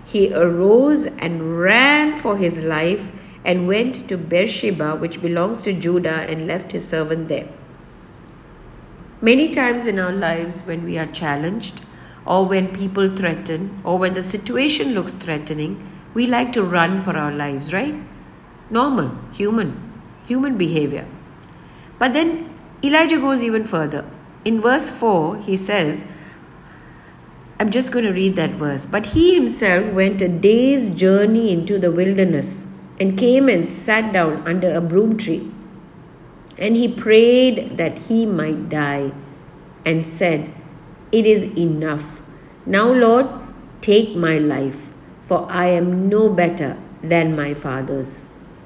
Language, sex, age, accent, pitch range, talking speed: English, female, 50-69, Indian, 160-220 Hz, 140 wpm